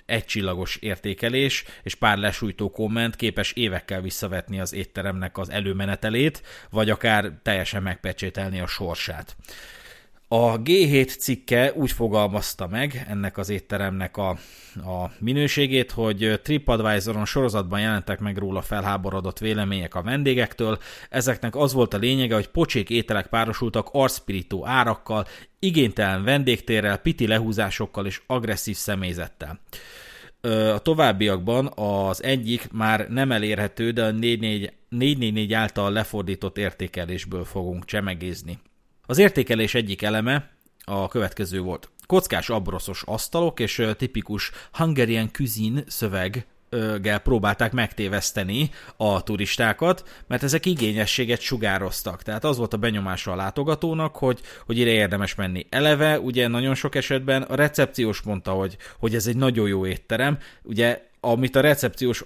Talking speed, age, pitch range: 125 wpm, 30-49, 100-125 Hz